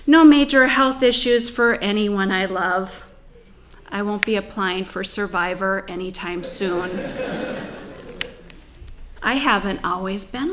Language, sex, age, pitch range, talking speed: English, female, 30-49, 195-250 Hz, 115 wpm